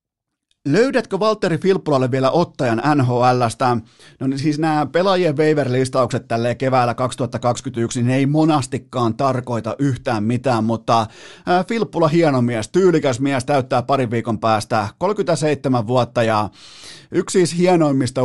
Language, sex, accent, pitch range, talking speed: Finnish, male, native, 120-150 Hz, 125 wpm